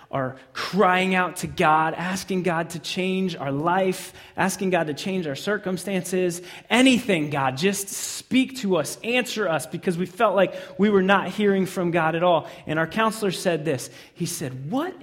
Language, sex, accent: English, male, American